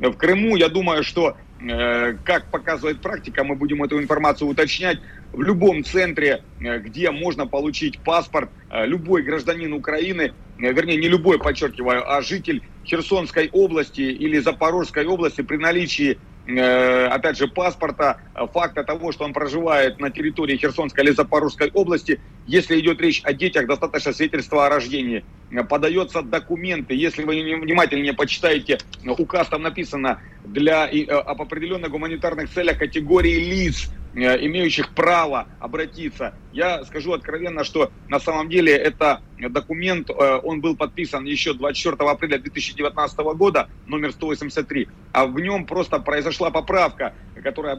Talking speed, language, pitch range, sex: 130 wpm, Russian, 140-165 Hz, male